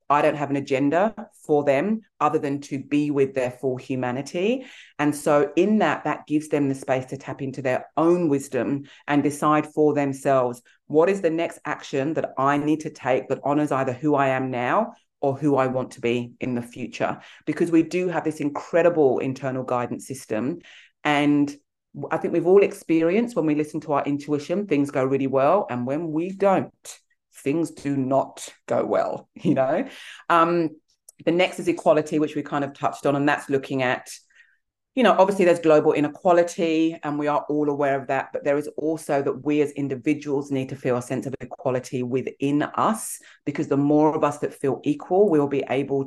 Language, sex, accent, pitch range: English, female, British, 135-155 Hz